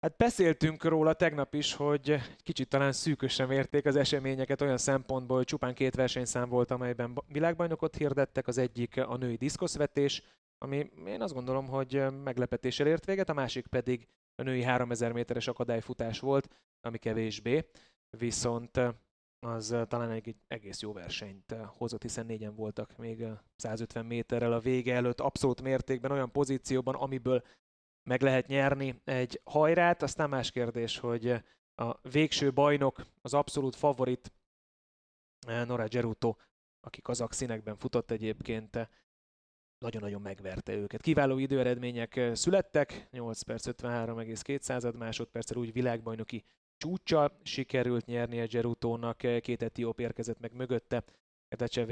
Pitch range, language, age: 115-140 Hz, Hungarian, 30-49